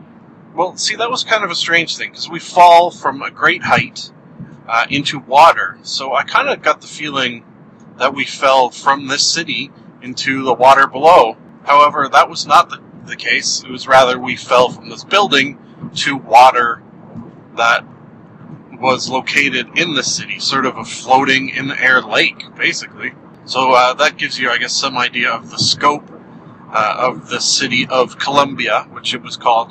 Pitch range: 125-150 Hz